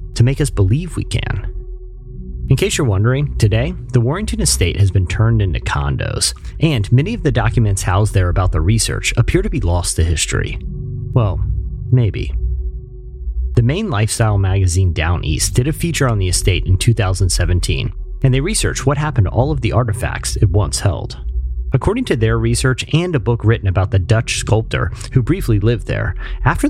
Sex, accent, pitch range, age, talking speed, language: male, American, 90-125 Hz, 30-49, 180 wpm, English